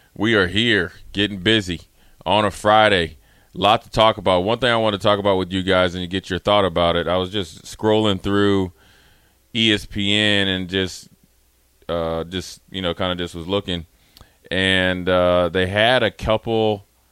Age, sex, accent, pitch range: 30-49, male, American, 90-105 Hz